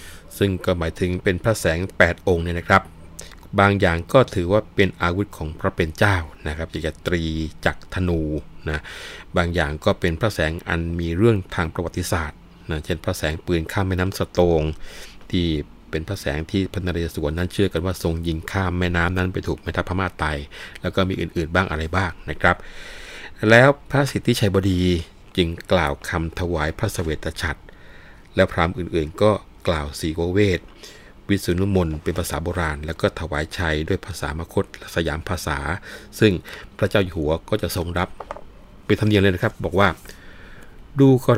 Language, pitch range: Thai, 80-95 Hz